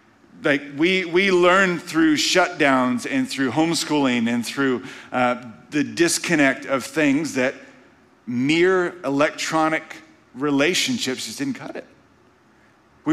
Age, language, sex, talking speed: 40-59, English, male, 115 wpm